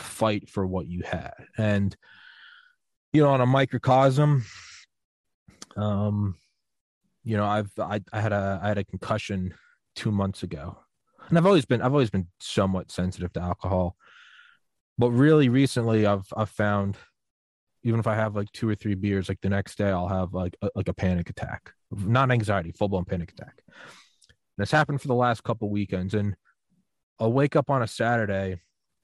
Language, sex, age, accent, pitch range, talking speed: English, male, 20-39, American, 100-125 Hz, 170 wpm